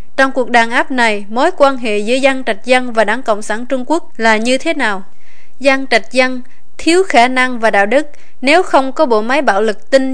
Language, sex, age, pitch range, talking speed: Vietnamese, female, 20-39, 220-275 Hz, 230 wpm